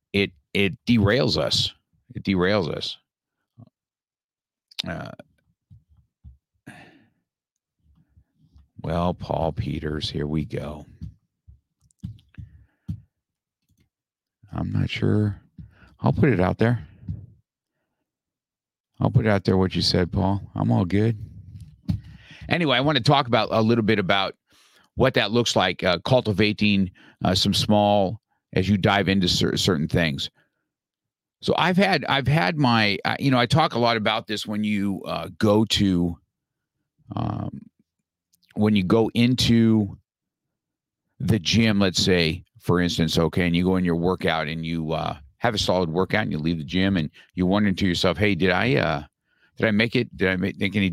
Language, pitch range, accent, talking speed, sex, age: English, 90-115 Hz, American, 145 wpm, male, 50-69